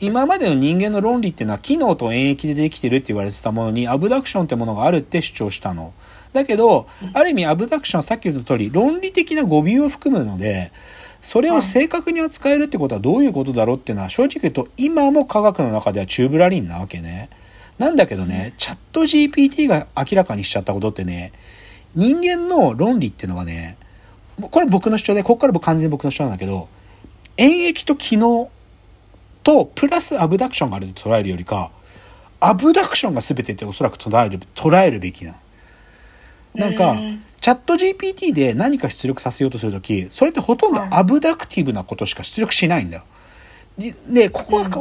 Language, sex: Japanese, male